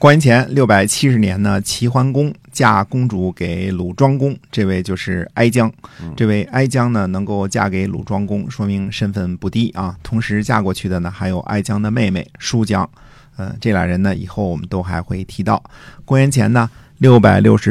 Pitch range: 95-125 Hz